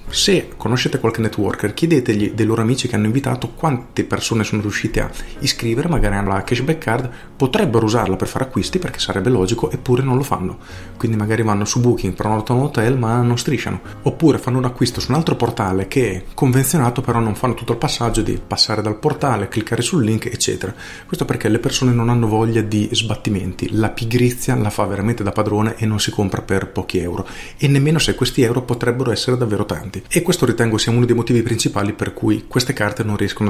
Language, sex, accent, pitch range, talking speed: Italian, male, native, 105-125 Hz, 210 wpm